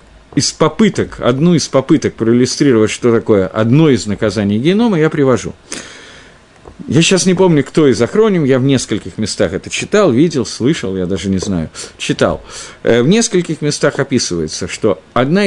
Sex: male